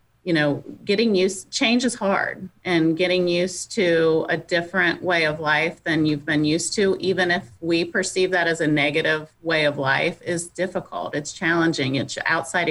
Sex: female